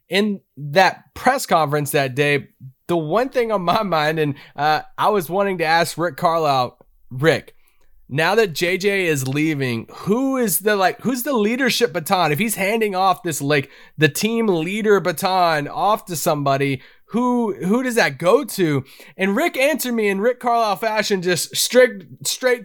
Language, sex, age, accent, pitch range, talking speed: English, male, 20-39, American, 155-220 Hz, 170 wpm